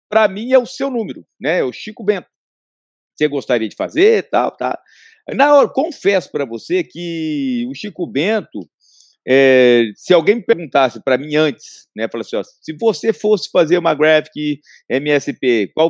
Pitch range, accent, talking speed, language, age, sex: 140-205 Hz, Brazilian, 175 wpm, Portuguese, 50-69, male